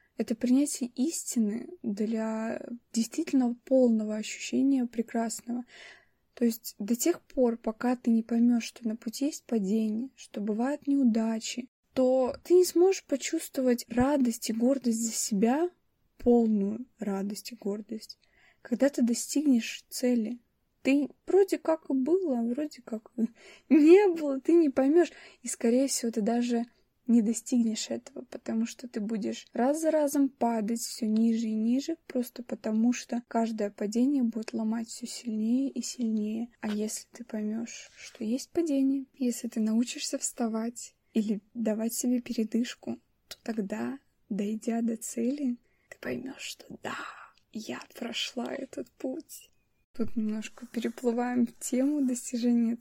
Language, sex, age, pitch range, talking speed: Russian, female, 20-39, 225-270 Hz, 135 wpm